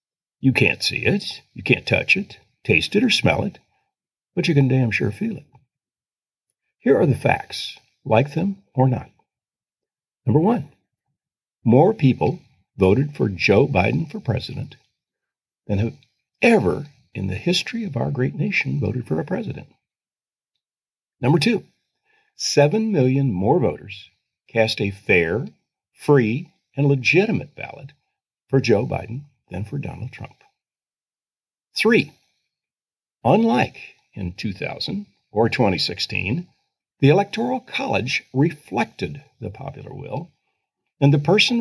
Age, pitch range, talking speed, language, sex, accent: 50-69, 110-175 Hz, 125 wpm, English, male, American